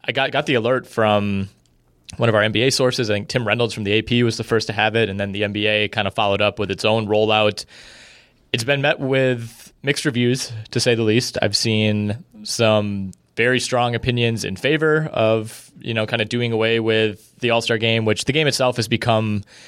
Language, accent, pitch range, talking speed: English, American, 105-125 Hz, 215 wpm